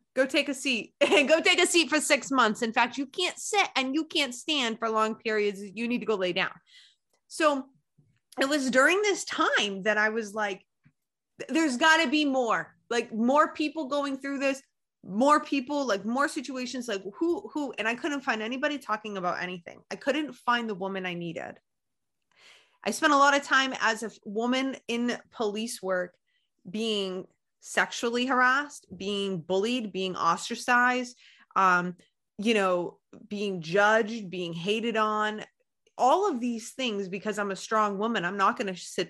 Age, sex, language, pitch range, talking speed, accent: 20-39, female, English, 200-275 Hz, 175 wpm, American